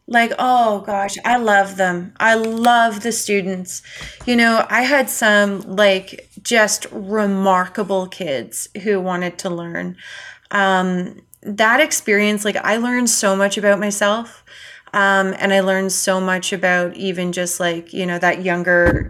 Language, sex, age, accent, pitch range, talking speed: English, female, 30-49, American, 185-210 Hz, 150 wpm